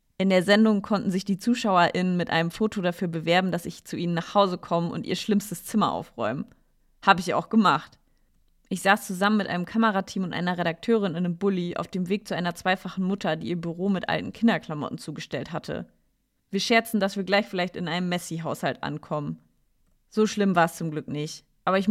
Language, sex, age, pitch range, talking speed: German, female, 30-49, 165-200 Hz, 205 wpm